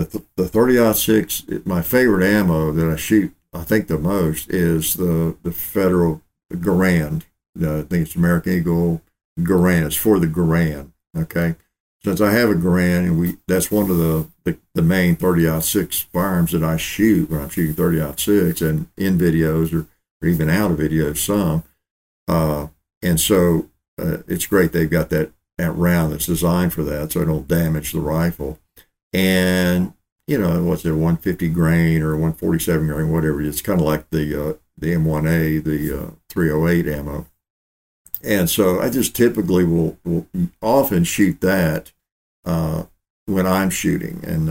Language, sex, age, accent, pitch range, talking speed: English, male, 60-79, American, 80-90 Hz, 175 wpm